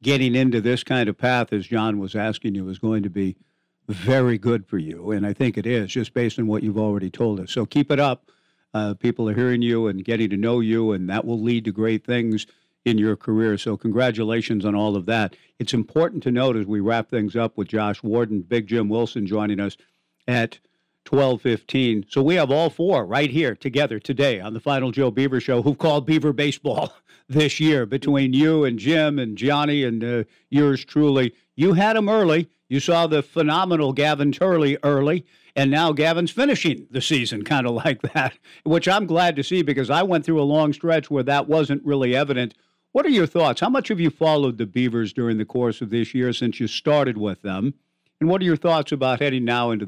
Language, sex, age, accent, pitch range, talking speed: English, male, 60-79, American, 110-150 Hz, 220 wpm